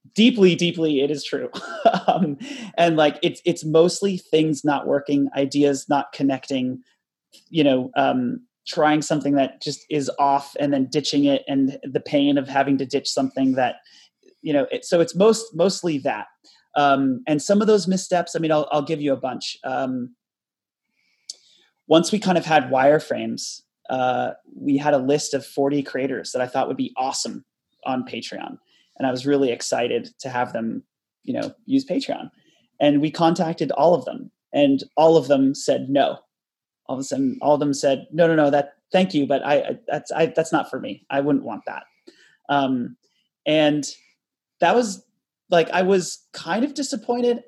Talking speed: 185 wpm